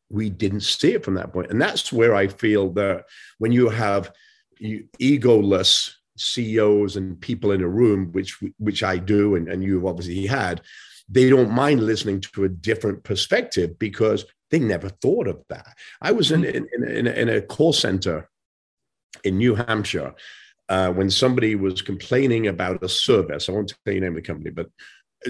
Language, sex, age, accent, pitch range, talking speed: English, male, 50-69, British, 95-130 Hz, 180 wpm